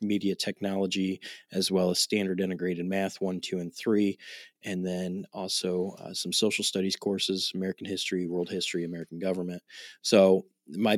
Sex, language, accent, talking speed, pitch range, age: male, English, American, 155 wpm, 95-105 Hz, 20-39